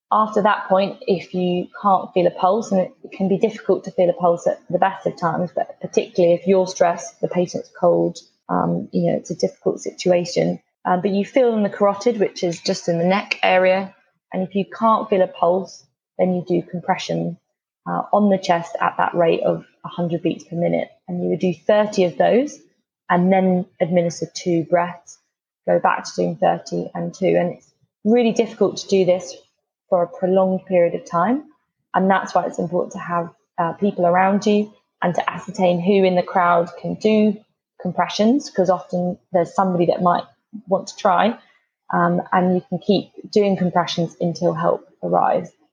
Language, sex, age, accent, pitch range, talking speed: English, female, 20-39, British, 175-200 Hz, 195 wpm